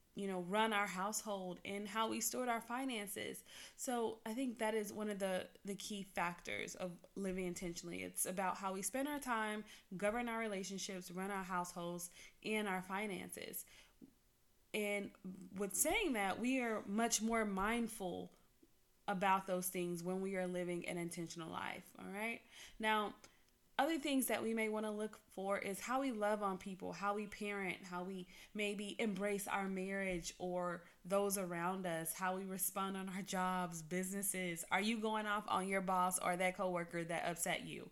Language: English